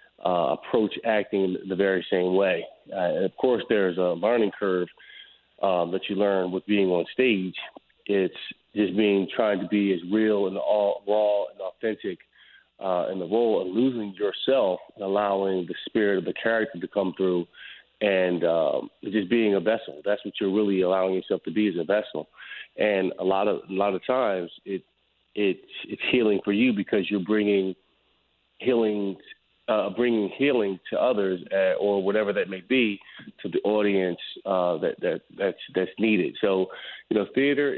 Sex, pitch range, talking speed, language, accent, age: male, 95-110 Hz, 180 wpm, English, American, 30-49